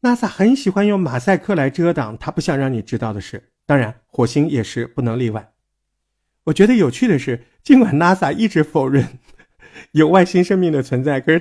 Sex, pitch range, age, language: male, 120-190 Hz, 50-69, Chinese